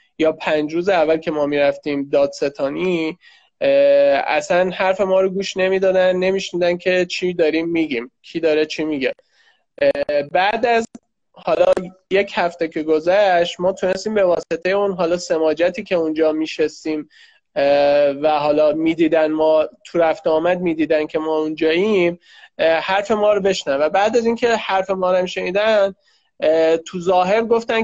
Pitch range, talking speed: 165-210 Hz, 150 wpm